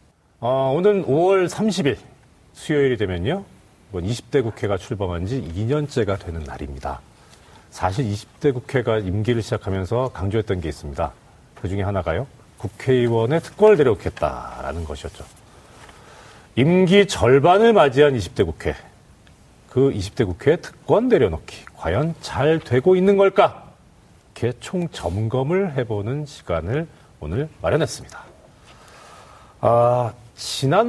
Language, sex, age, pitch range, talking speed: English, male, 40-59, 95-150 Hz, 100 wpm